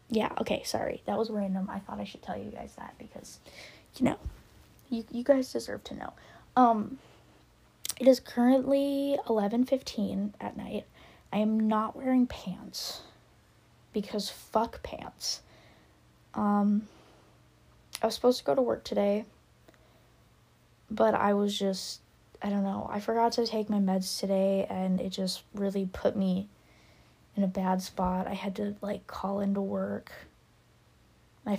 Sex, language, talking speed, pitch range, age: female, English, 150 wpm, 190-220 Hz, 10-29